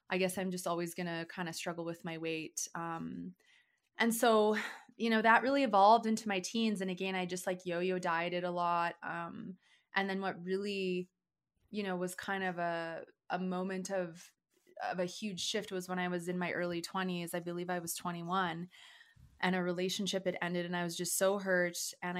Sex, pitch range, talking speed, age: female, 175-200 Hz, 205 wpm, 20-39